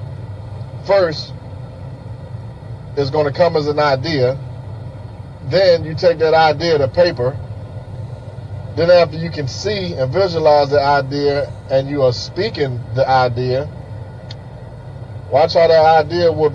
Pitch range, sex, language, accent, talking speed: 110-155 Hz, male, English, American, 125 wpm